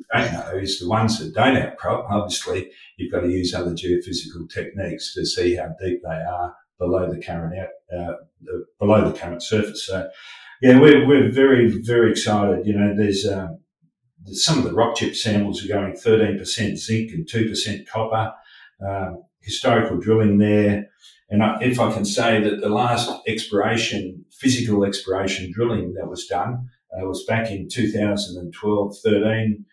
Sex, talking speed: male, 165 wpm